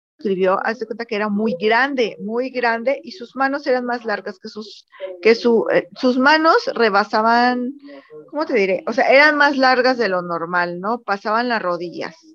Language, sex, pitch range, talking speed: Spanish, female, 205-270 Hz, 180 wpm